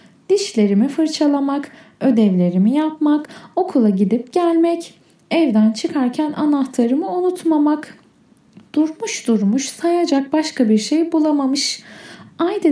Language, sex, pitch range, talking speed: Turkish, female, 245-320 Hz, 90 wpm